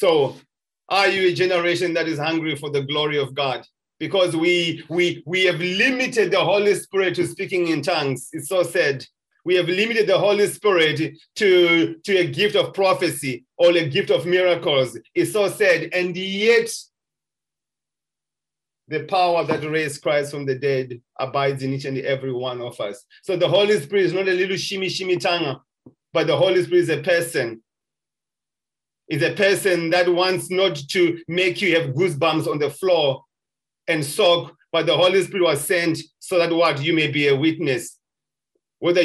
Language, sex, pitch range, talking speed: English, male, 160-185 Hz, 175 wpm